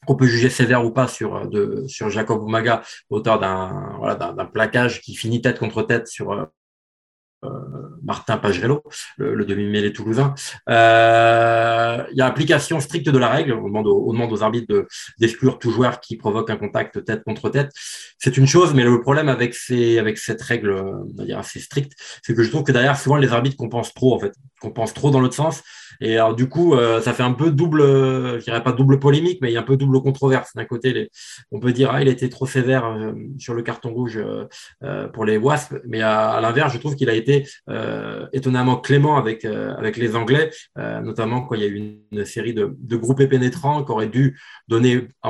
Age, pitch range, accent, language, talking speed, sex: 20-39, 115-135 Hz, French, French, 230 wpm, male